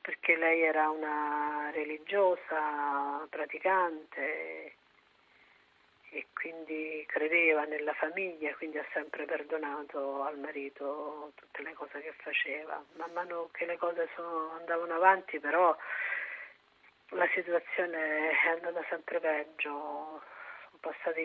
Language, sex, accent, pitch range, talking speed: Italian, female, native, 150-170 Hz, 115 wpm